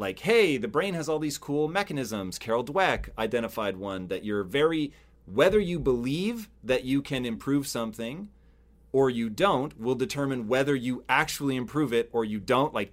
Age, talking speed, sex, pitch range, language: 30-49, 175 wpm, male, 110-145 Hz, English